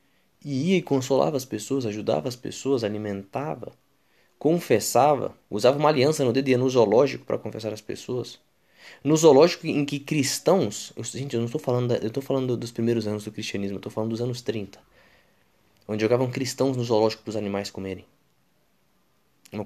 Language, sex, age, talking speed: Portuguese, male, 20-39, 165 wpm